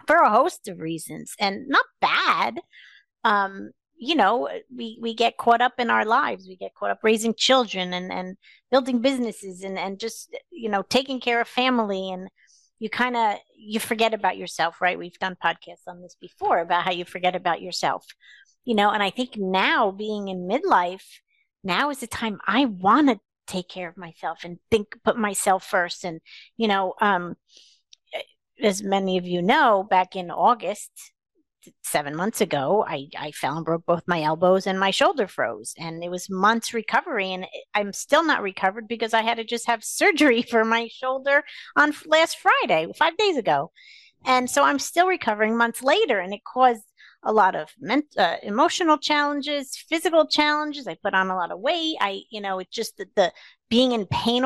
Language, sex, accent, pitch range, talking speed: English, female, American, 190-260 Hz, 190 wpm